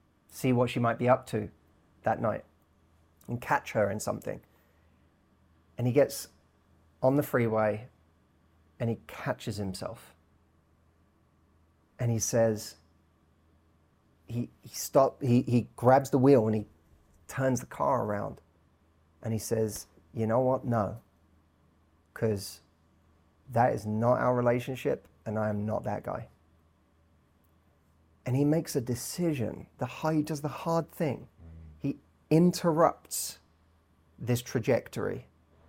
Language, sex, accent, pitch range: English, male, British, 80-130 Hz